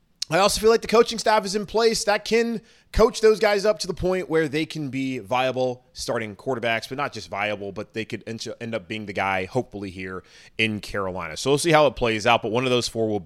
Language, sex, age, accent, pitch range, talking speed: English, male, 20-39, American, 110-145 Hz, 250 wpm